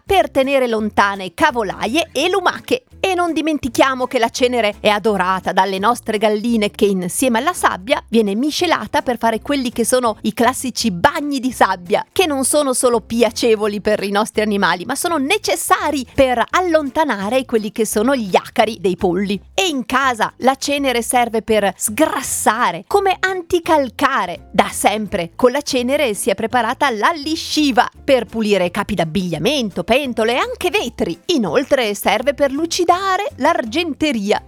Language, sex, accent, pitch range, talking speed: Italian, female, native, 215-295 Hz, 150 wpm